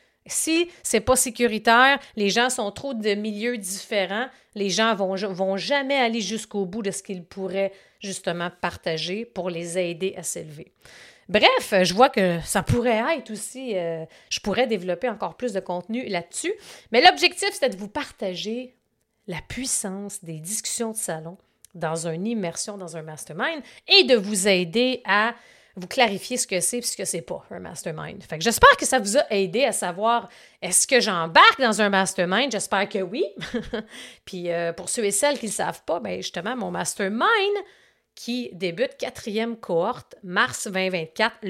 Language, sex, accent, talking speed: French, female, Canadian, 180 wpm